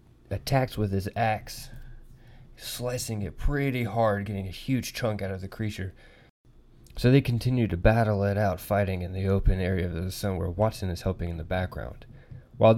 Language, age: English, 20-39